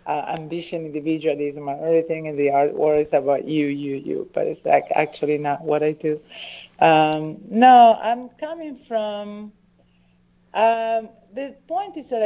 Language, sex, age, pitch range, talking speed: English, female, 50-69, 150-190 Hz, 155 wpm